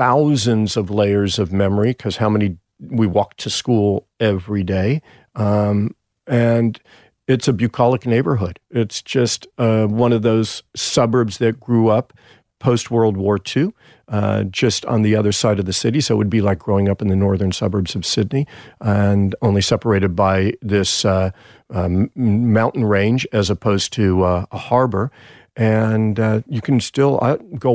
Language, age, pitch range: English, 50-69, 105-120 Hz